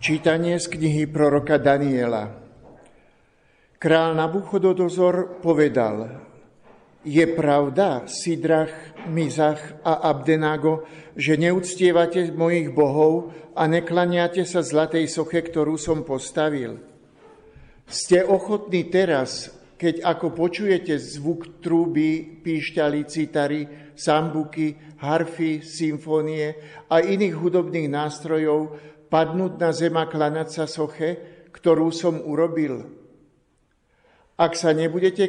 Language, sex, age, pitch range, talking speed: Slovak, male, 50-69, 150-170 Hz, 95 wpm